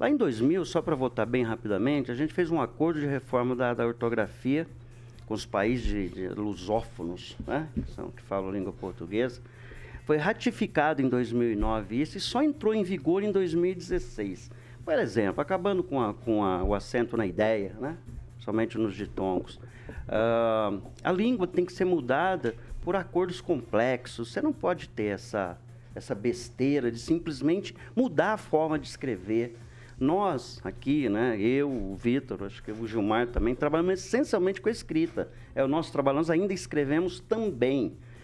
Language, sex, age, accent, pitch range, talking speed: Portuguese, male, 50-69, Brazilian, 115-175 Hz, 170 wpm